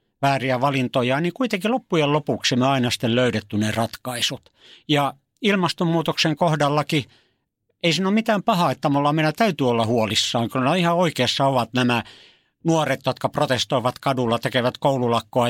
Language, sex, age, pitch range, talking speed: Finnish, male, 60-79, 120-160 Hz, 145 wpm